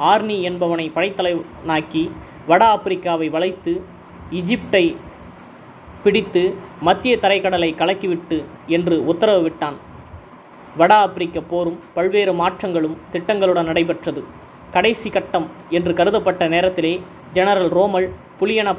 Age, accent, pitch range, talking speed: 20-39, native, 170-195 Hz, 90 wpm